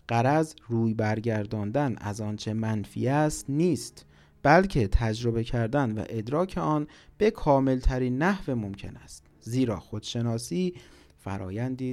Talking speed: 105 wpm